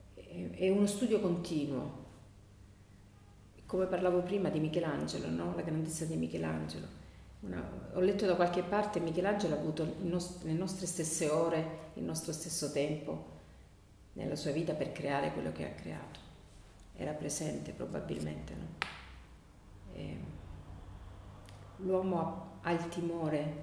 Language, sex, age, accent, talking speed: Italian, female, 40-59, native, 125 wpm